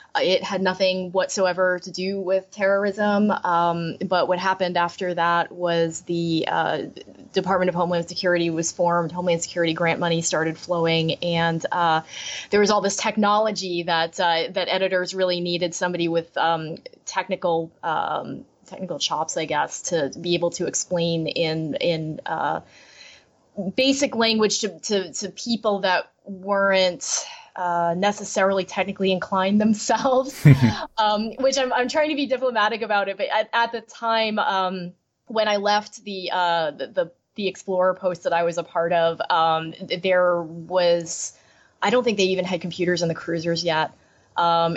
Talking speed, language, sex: 155 wpm, English, female